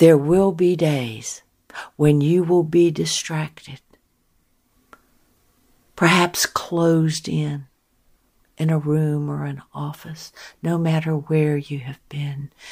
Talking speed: 115 wpm